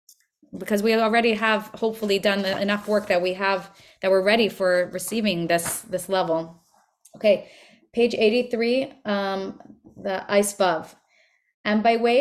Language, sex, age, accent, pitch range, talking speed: English, female, 20-39, Canadian, 200-235 Hz, 145 wpm